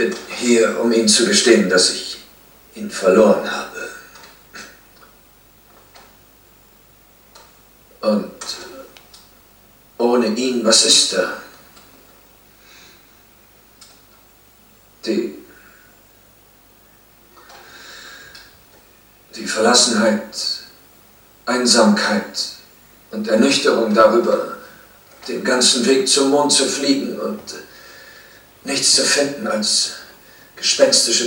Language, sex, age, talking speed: German, male, 50-69, 70 wpm